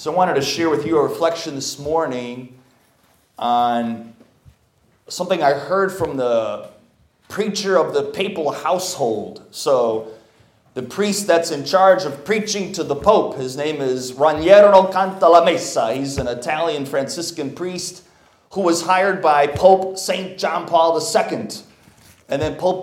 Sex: male